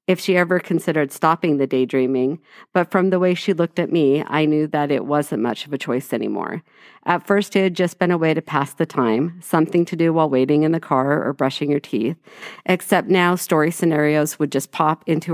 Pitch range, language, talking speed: 145-180 Hz, English, 225 wpm